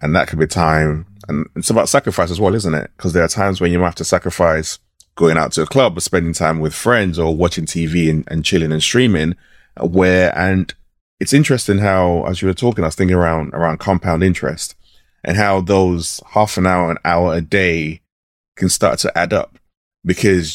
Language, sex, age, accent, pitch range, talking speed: English, male, 20-39, British, 85-100 Hz, 210 wpm